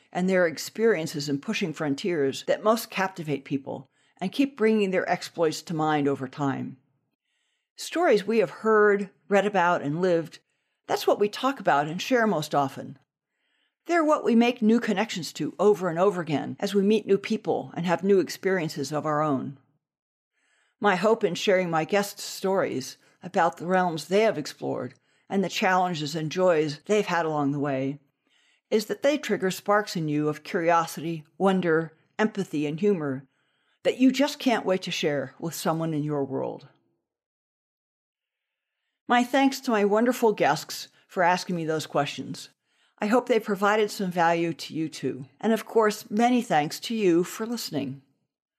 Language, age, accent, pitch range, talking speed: English, 60-79, American, 150-215 Hz, 170 wpm